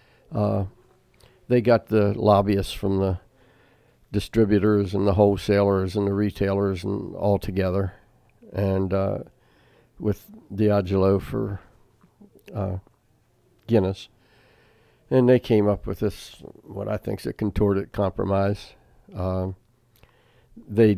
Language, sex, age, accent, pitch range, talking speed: English, male, 60-79, American, 100-115 Hz, 110 wpm